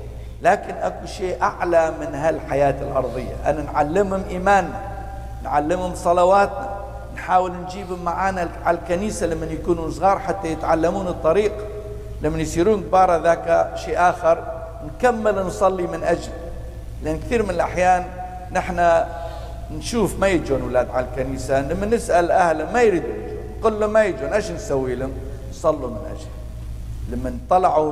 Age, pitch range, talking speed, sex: 50-69, 150-185 Hz, 125 wpm, male